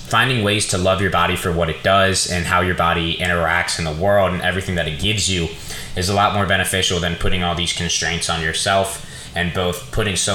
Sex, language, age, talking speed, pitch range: male, English, 20-39, 230 wpm, 85-100 Hz